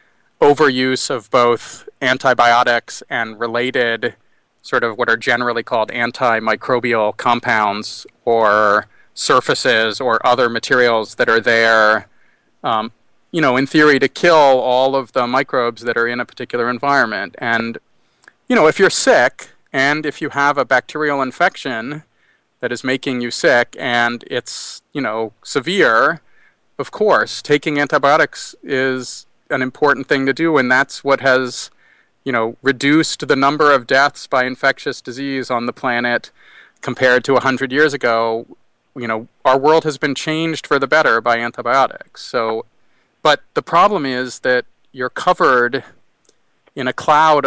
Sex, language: male, English